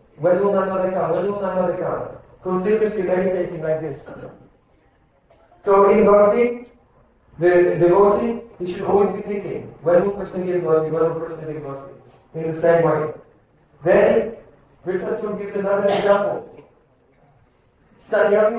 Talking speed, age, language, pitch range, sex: 150 wpm, 40-59, Hindi, 180-225 Hz, male